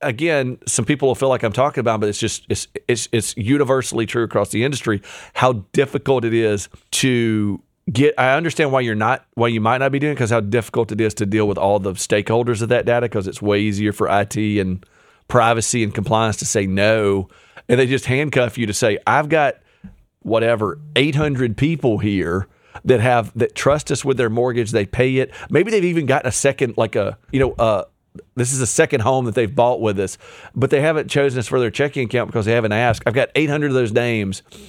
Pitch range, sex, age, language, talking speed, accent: 105-130 Hz, male, 40-59, English, 225 wpm, American